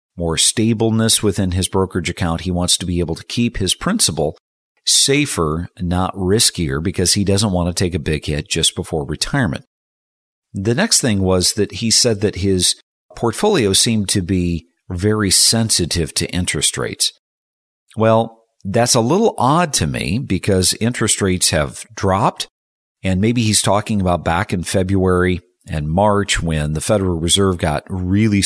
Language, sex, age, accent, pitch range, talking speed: English, male, 50-69, American, 90-105 Hz, 160 wpm